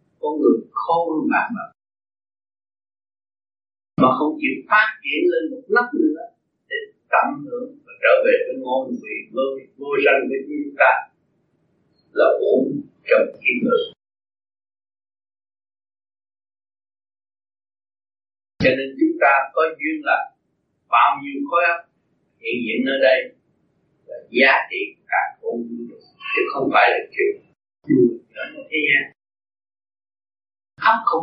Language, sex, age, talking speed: Vietnamese, male, 50-69, 125 wpm